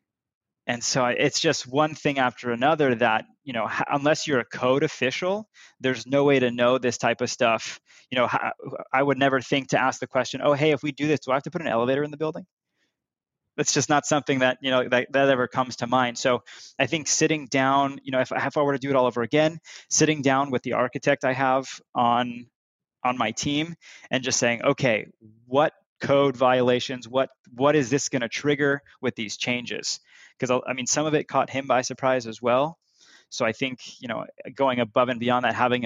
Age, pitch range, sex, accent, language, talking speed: 20-39, 125-145 Hz, male, American, English, 220 wpm